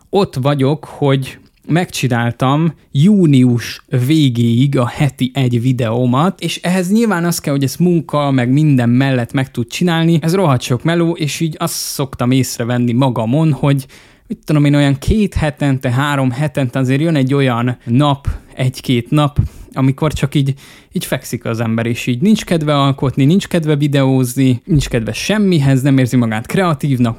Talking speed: 160 wpm